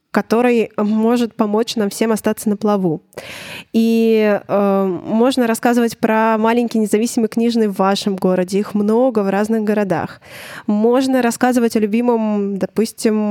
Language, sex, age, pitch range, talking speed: Russian, female, 20-39, 195-230 Hz, 130 wpm